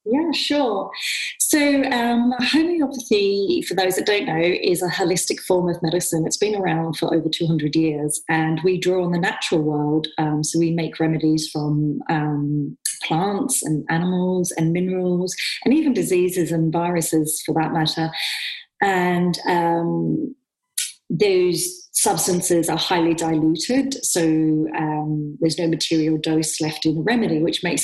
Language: English